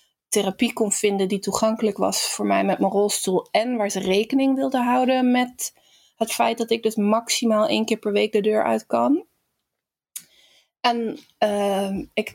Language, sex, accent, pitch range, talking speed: Dutch, female, Dutch, 200-240 Hz, 170 wpm